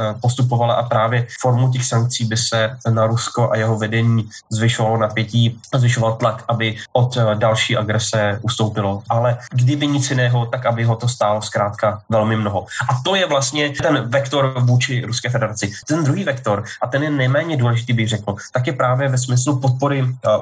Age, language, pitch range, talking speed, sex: 20-39, Slovak, 115-130 Hz, 175 wpm, male